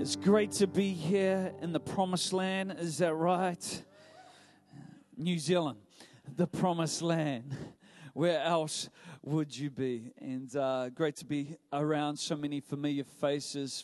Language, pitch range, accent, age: English, 135-160 Hz, Australian, 40-59